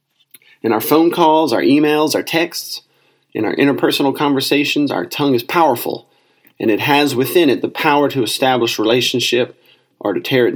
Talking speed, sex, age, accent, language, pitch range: 170 wpm, male, 30-49, American, English, 125-180 Hz